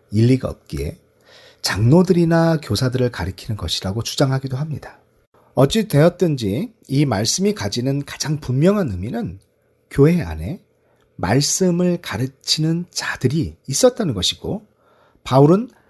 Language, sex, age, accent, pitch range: Korean, male, 40-59, native, 110-180 Hz